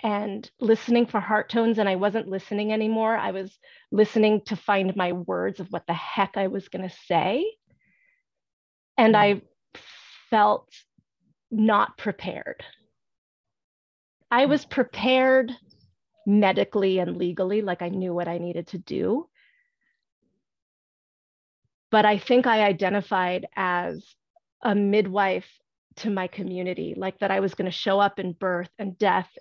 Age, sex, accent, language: 30-49, female, American, English